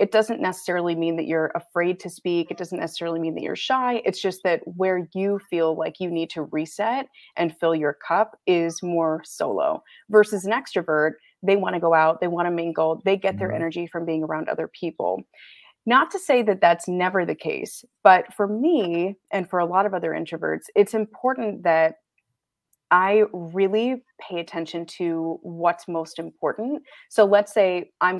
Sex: female